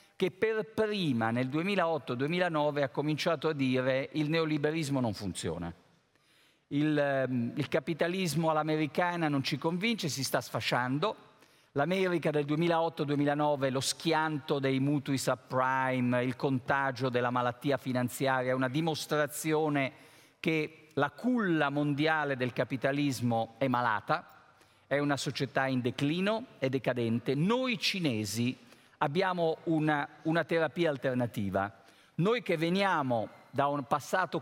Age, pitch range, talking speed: 50-69, 135-170 Hz, 120 wpm